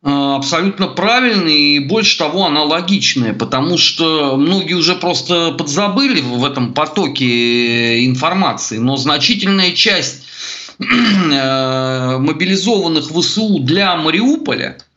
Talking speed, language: 90 wpm, Russian